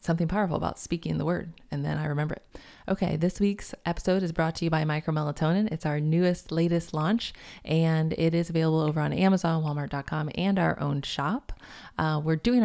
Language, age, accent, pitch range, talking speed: English, 20-39, American, 145-165 Hz, 200 wpm